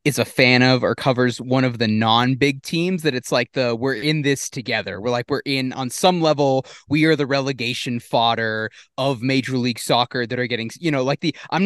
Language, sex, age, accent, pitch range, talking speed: English, male, 20-39, American, 120-145 Hz, 225 wpm